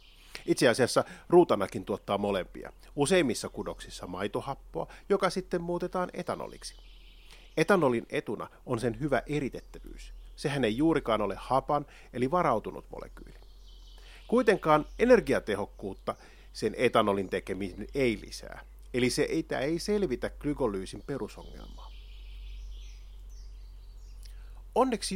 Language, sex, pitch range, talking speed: Finnish, male, 100-145 Hz, 95 wpm